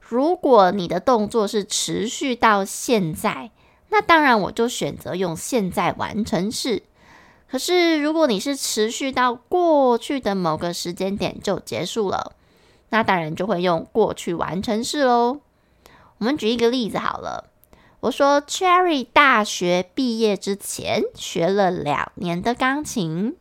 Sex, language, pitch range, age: female, Chinese, 185-265 Hz, 20-39